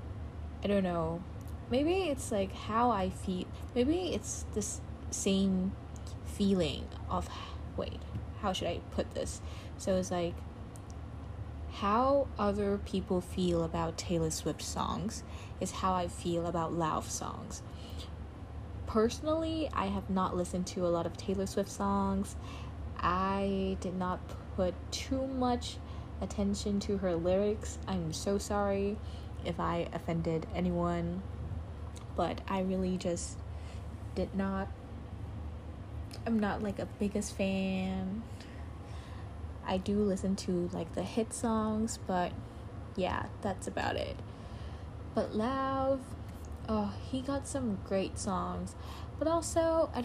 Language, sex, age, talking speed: English, female, 20-39, 125 wpm